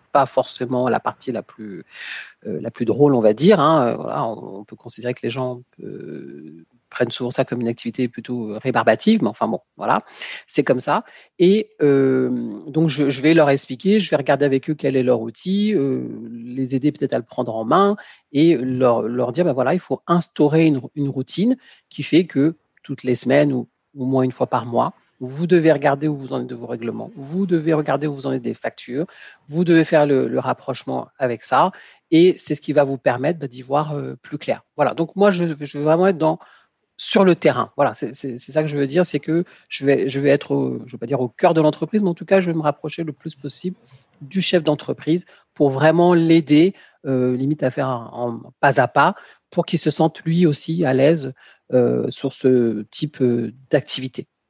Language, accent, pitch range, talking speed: French, French, 130-165 Hz, 220 wpm